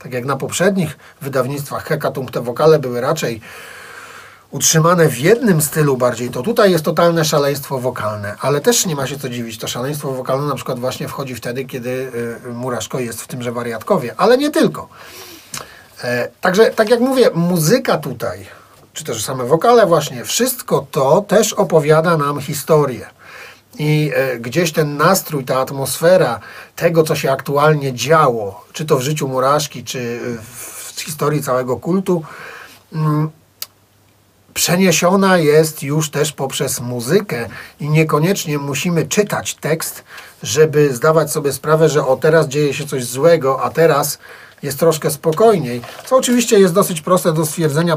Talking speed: 145 wpm